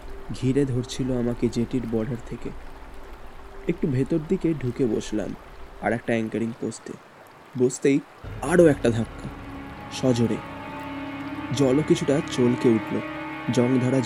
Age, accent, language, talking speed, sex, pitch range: 20-39, native, Bengali, 80 wpm, male, 100-130 Hz